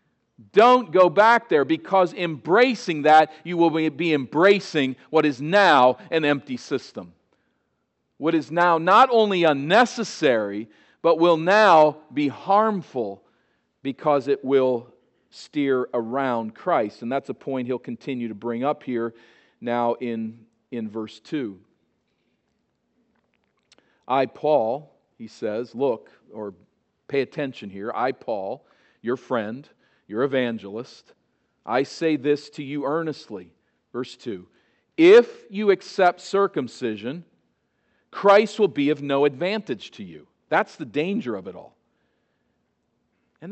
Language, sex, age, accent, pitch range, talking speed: English, male, 50-69, American, 135-195 Hz, 125 wpm